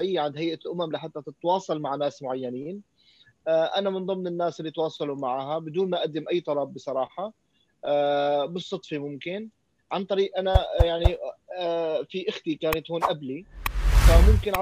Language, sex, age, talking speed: Arabic, male, 30-49, 135 wpm